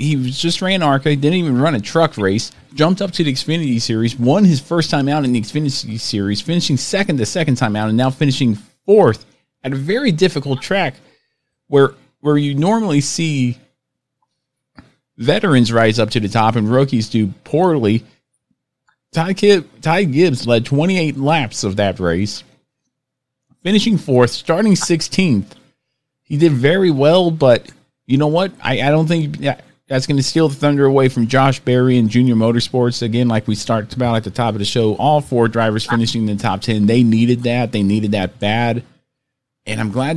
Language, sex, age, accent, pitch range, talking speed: English, male, 40-59, American, 115-145 Hz, 185 wpm